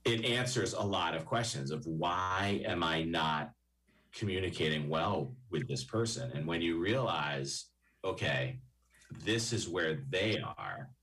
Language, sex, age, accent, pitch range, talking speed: English, male, 40-59, American, 65-110 Hz, 140 wpm